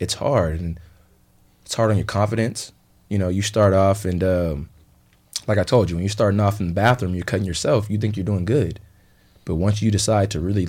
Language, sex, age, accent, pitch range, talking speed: English, male, 20-39, American, 90-105 Hz, 225 wpm